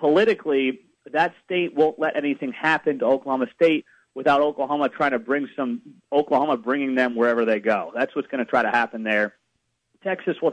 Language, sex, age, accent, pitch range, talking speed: English, male, 30-49, American, 125-155 Hz, 180 wpm